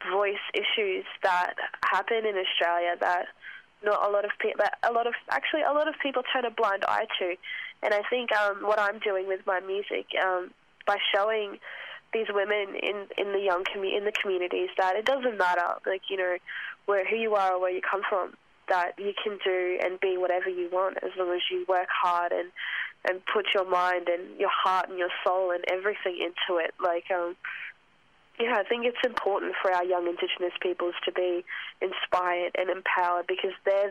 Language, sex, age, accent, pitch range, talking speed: English, female, 10-29, Australian, 180-205 Hz, 200 wpm